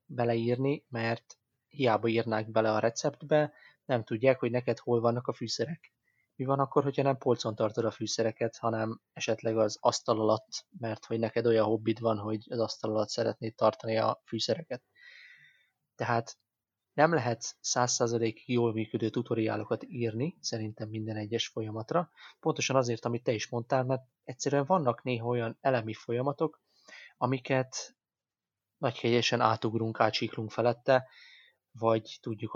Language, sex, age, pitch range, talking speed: Hungarian, male, 20-39, 110-125 Hz, 140 wpm